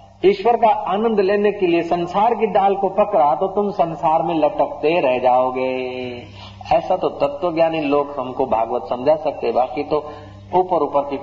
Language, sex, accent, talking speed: Hindi, male, native, 160 wpm